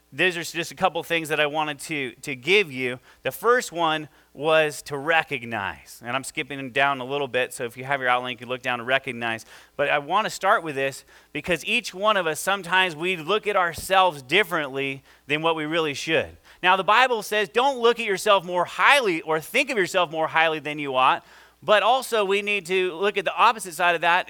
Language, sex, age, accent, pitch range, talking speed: English, male, 30-49, American, 155-195 Hz, 225 wpm